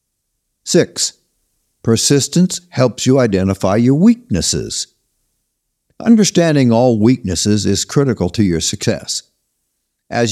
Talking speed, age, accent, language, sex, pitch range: 95 wpm, 60-79, American, English, male, 105-145 Hz